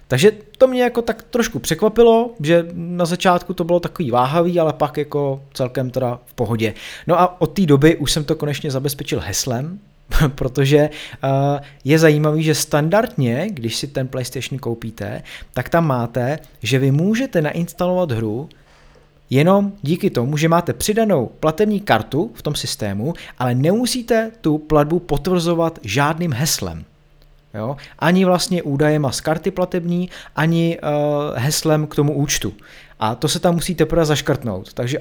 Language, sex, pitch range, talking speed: Czech, male, 130-170 Hz, 155 wpm